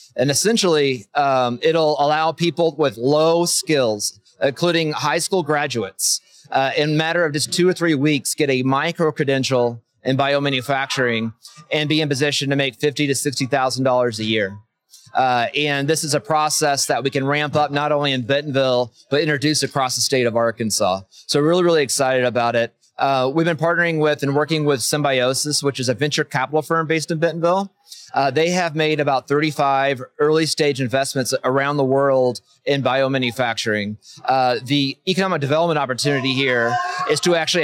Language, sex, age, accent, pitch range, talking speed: English, male, 30-49, American, 130-155 Hz, 175 wpm